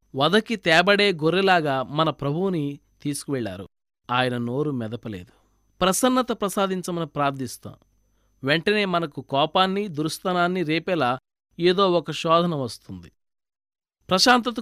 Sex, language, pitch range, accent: male, Telugu, 140-190 Hz, native